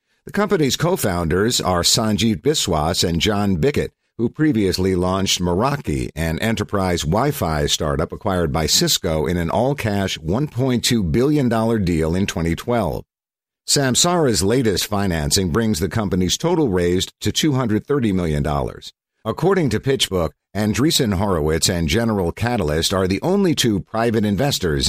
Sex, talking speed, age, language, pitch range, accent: male, 130 wpm, 50-69, English, 90-120 Hz, American